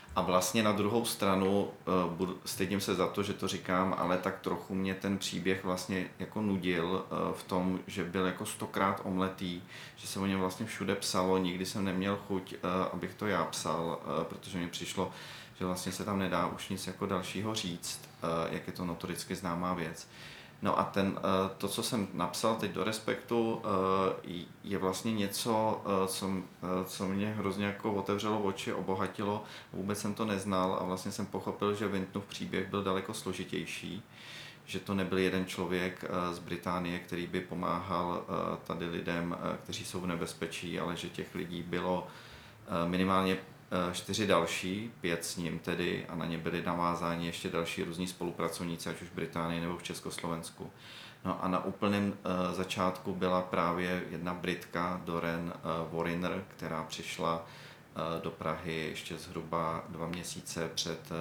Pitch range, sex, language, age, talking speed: 85-95 Hz, male, Czech, 30-49, 155 wpm